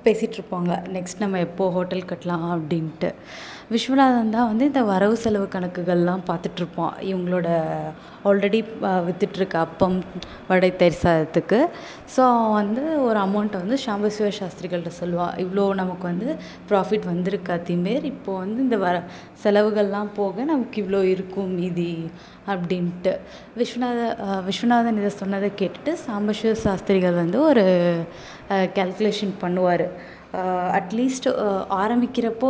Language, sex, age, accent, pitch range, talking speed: Tamil, female, 20-39, native, 180-215 Hz, 110 wpm